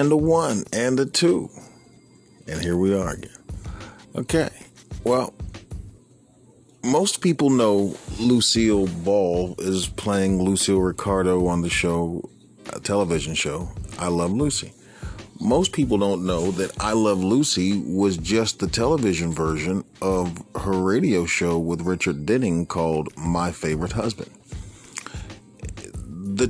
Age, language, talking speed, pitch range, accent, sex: 40-59, English, 125 wpm, 90-110 Hz, American, male